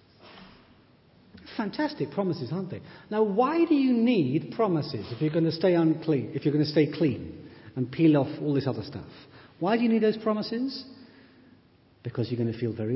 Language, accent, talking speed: English, British, 190 wpm